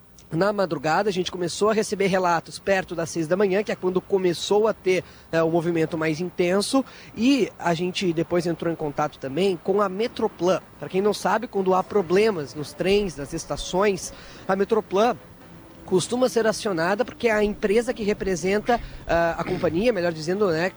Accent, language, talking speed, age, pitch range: Brazilian, Portuguese, 180 wpm, 20-39, 180-215 Hz